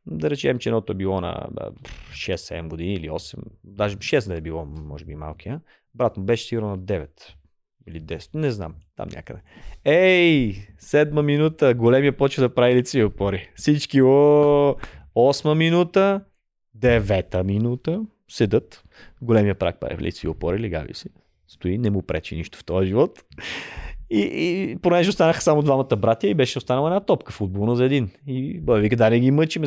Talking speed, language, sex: 175 wpm, Bulgarian, male